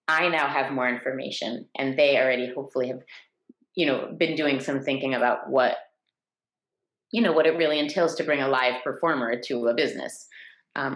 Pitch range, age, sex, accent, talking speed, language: 140-195 Hz, 30-49, female, American, 180 wpm, English